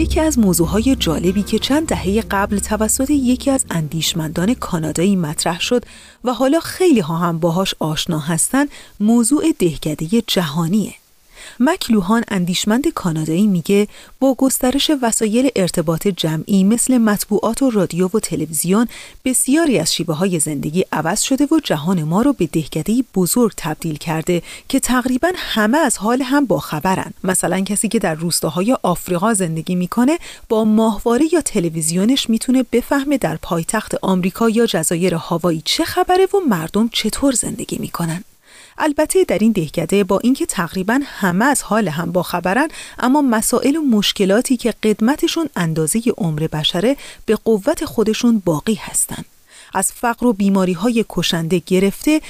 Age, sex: 30-49, female